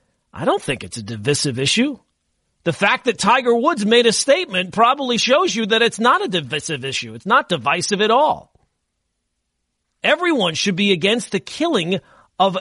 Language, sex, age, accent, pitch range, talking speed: English, male, 40-59, American, 170-245 Hz, 170 wpm